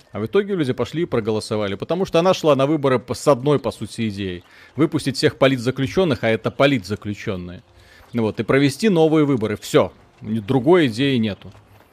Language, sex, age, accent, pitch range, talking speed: Russian, male, 30-49, native, 110-145 Hz, 165 wpm